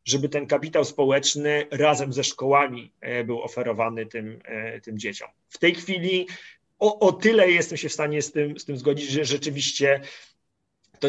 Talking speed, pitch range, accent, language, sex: 155 wpm, 135-170 Hz, native, Polish, male